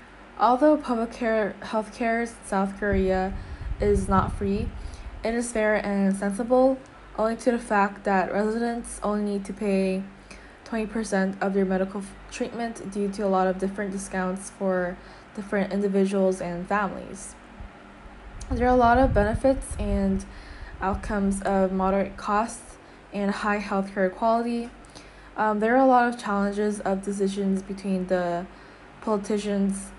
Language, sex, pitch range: Korean, female, 190-215 Hz